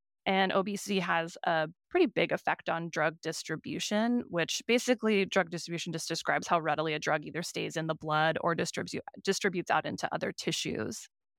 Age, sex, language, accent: 20-39, female, English, American